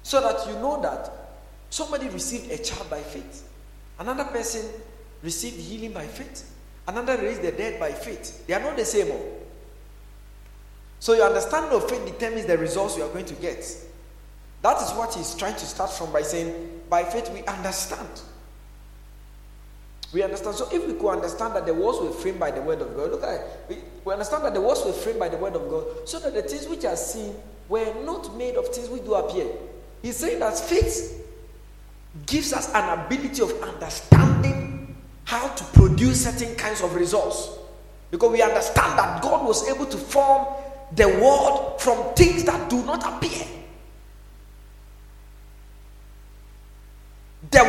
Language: English